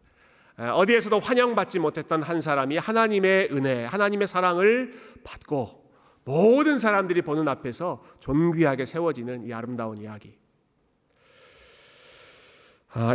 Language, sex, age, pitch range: Korean, male, 40-59, 150-215 Hz